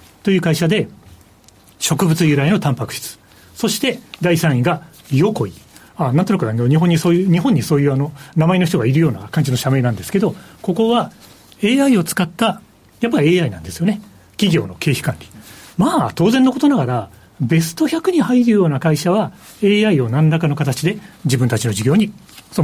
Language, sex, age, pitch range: Japanese, male, 40-59, 125-180 Hz